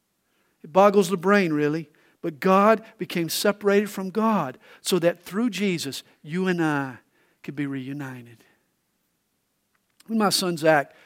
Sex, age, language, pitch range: male, 50-69, English, 165-225 Hz